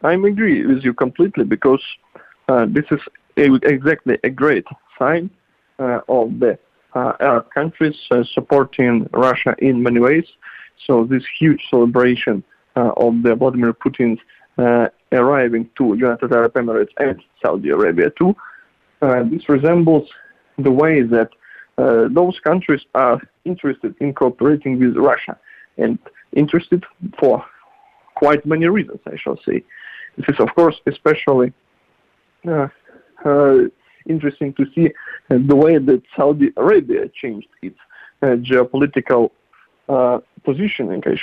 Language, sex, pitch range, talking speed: English, male, 130-170 Hz, 135 wpm